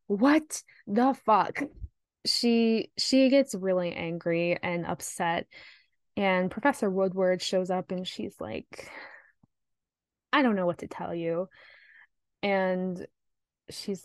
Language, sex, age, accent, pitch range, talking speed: English, female, 10-29, American, 180-220 Hz, 115 wpm